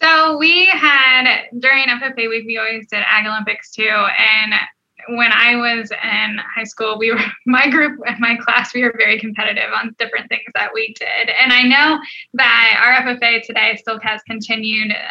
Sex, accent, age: female, American, 10-29